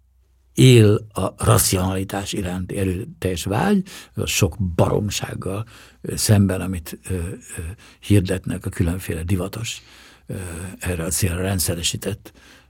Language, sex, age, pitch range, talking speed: Hungarian, male, 60-79, 95-125 Hz, 105 wpm